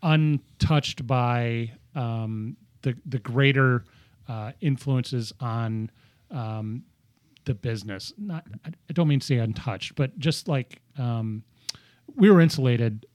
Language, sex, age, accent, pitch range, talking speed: English, male, 30-49, American, 120-140 Hz, 120 wpm